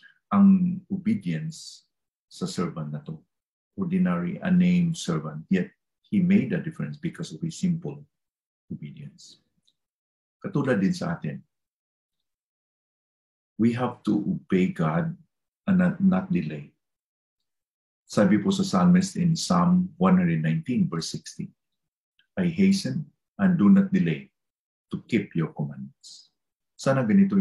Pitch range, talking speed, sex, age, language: 125-185 Hz, 115 wpm, male, 50-69, English